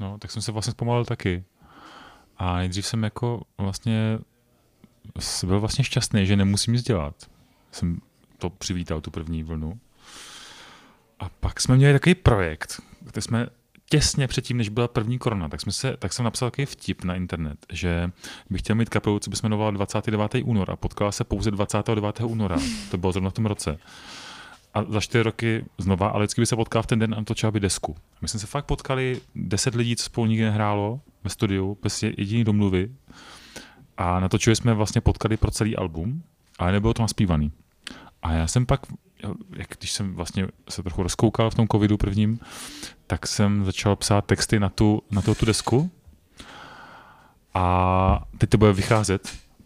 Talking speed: 175 wpm